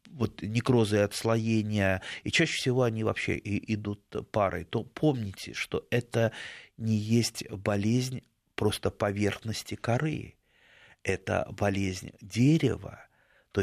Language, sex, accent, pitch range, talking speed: Russian, male, native, 100-120 Hz, 105 wpm